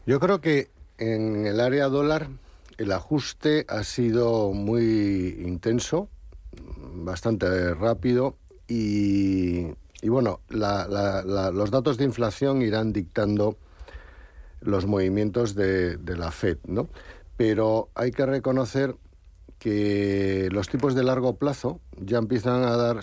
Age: 60-79